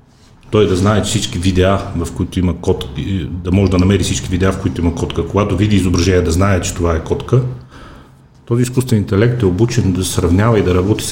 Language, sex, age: Bulgarian, male, 40-59